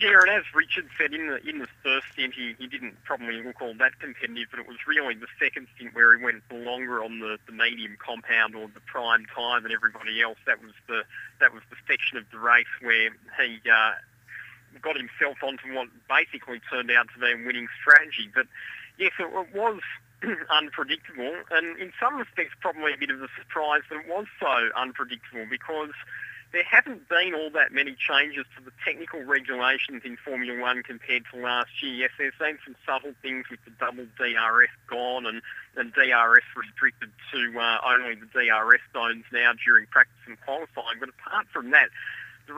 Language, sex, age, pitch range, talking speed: English, male, 30-49, 120-135 Hz, 195 wpm